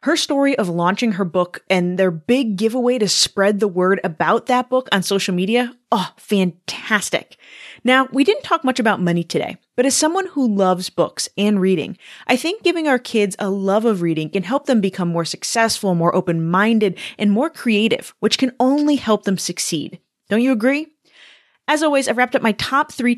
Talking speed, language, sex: 195 wpm, English, female